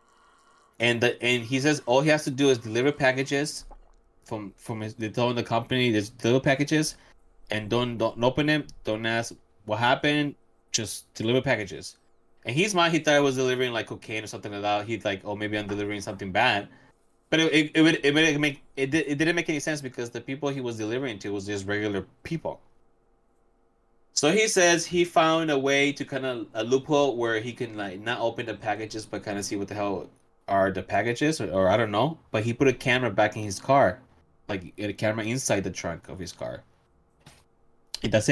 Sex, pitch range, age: male, 110-140 Hz, 20-39